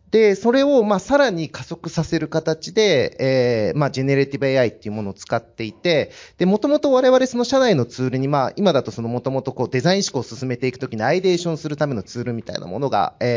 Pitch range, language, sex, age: 125-195 Hz, Japanese, male, 30-49